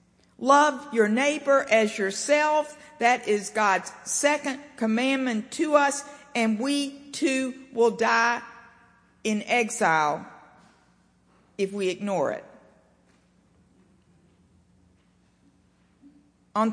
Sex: female